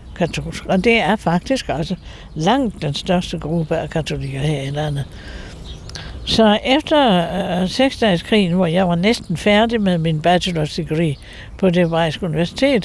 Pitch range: 155-220 Hz